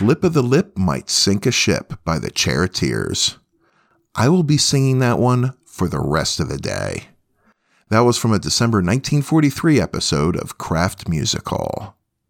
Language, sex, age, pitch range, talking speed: English, male, 40-59, 95-130 Hz, 165 wpm